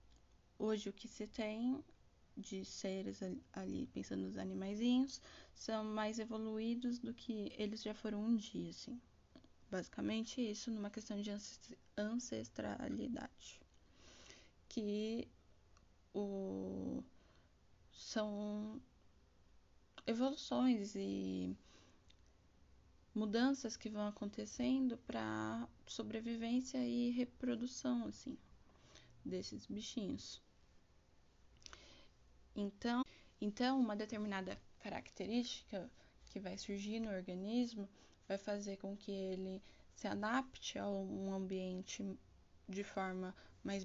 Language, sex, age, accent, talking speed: Portuguese, female, 10-29, Brazilian, 90 wpm